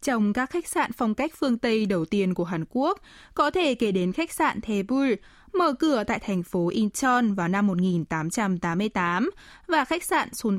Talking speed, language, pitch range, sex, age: 180 wpm, Vietnamese, 195-275 Hz, female, 20-39